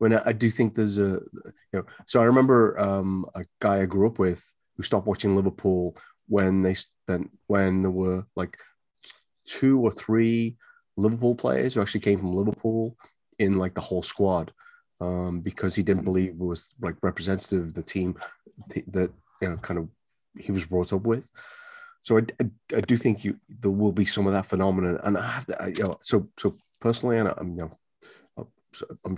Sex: male